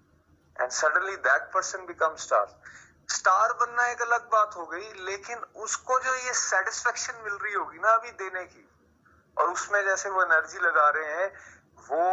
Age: 30-49